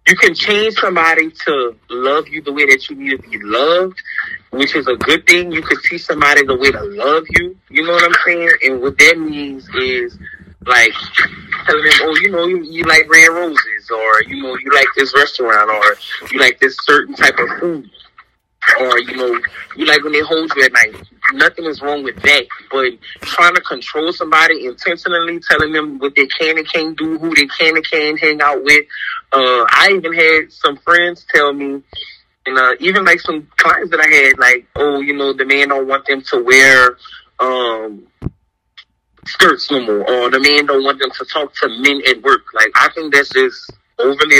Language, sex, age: English, male, 20-39